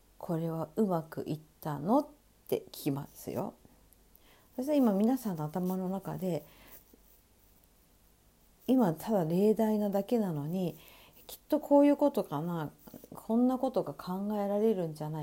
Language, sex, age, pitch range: Japanese, female, 50-69, 170-220 Hz